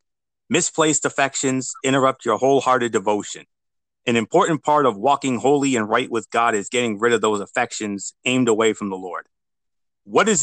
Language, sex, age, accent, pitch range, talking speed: English, male, 30-49, American, 115-145 Hz, 165 wpm